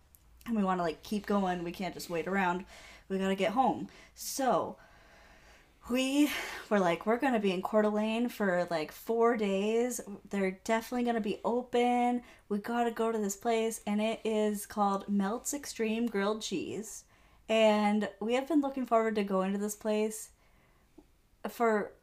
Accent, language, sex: American, English, female